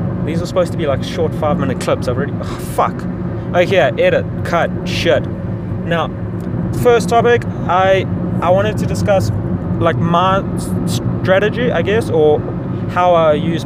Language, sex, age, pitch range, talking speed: English, male, 20-39, 135-160 Hz, 160 wpm